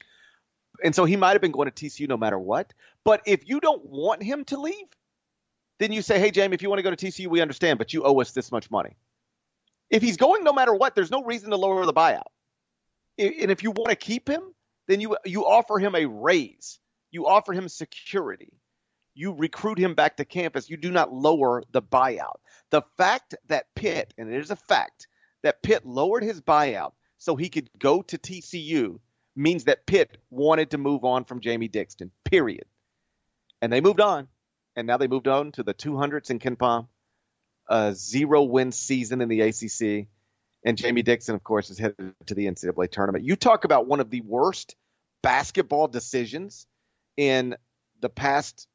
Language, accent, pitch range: English, American, 120-200 Hz